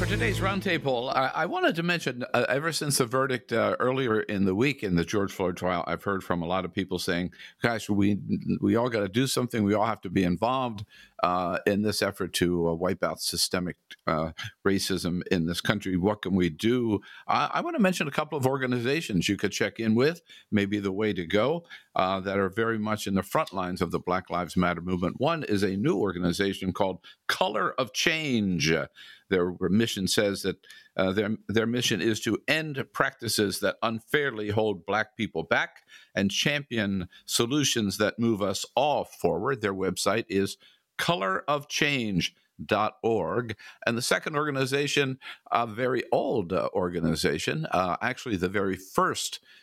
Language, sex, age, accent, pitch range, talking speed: English, male, 50-69, American, 95-120 Hz, 180 wpm